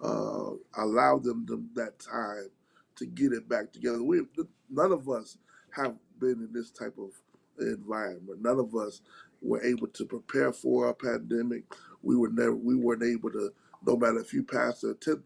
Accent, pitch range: American, 115-140 Hz